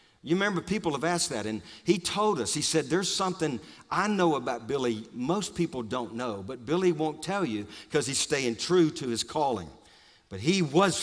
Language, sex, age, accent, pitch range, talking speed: English, male, 50-69, American, 115-165 Hz, 200 wpm